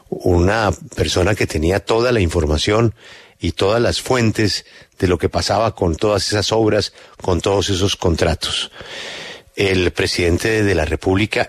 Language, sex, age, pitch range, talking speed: Spanish, male, 50-69, 90-115 Hz, 145 wpm